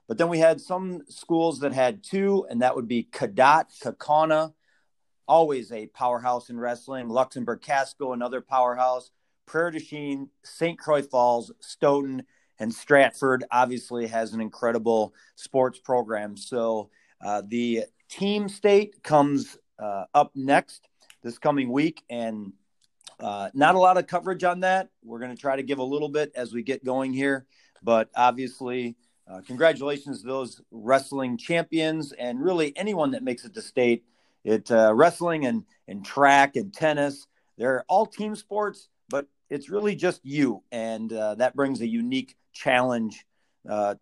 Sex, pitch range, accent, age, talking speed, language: male, 120-160 Hz, American, 40-59, 155 wpm, English